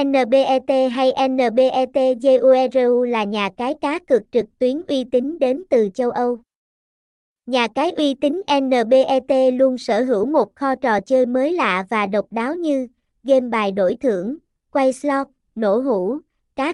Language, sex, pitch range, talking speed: Vietnamese, male, 235-280 Hz, 155 wpm